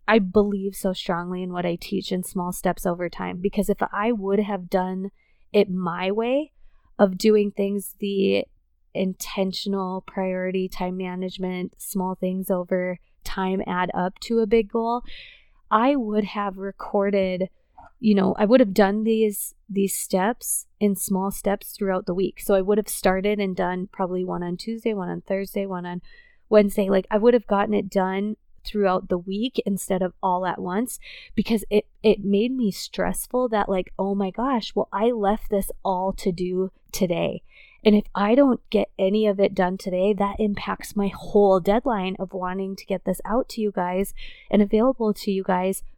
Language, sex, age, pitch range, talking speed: English, female, 20-39, 185-210 Hz, 180 wpm